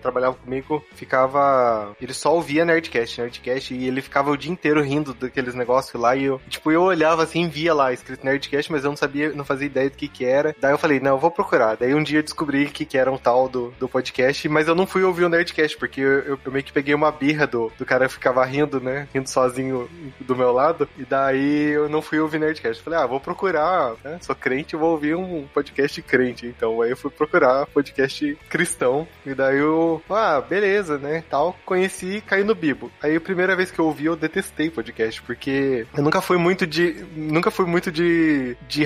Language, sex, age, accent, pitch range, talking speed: Portuguese, male, 20-39, Brazilian, 130-165 Hz, 220 wpm